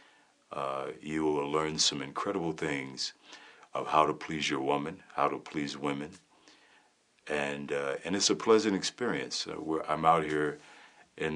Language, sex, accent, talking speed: English, male, American, 155 wpm